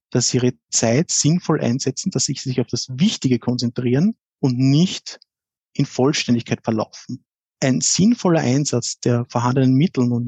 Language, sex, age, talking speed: German, male, 50-69, 145 wpm